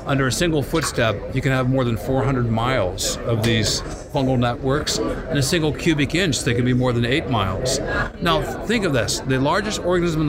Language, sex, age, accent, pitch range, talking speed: English, male, 60-79, American, 125-150 Hz, 205 wpm